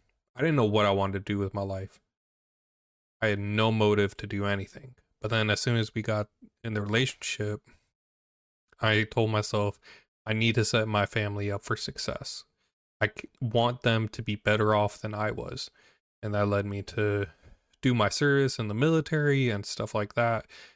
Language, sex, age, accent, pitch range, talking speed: English, male, 20-39, American, 105-120 Hz, 190 wpm